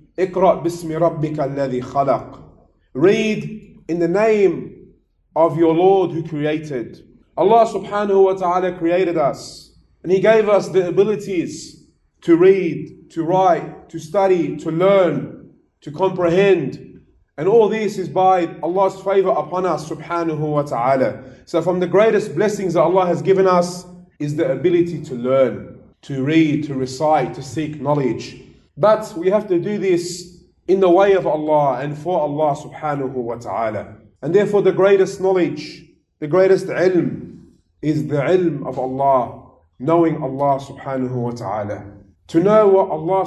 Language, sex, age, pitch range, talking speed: English, male, 30-49, 150-190 Hz, 145 wpm